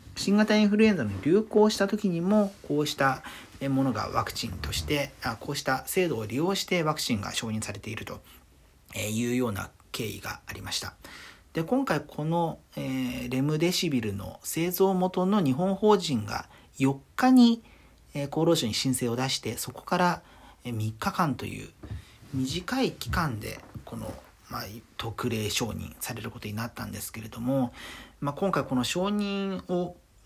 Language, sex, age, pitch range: Japanese, male, 40-59, 115-180 Hz